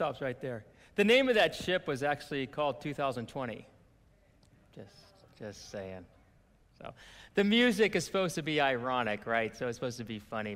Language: English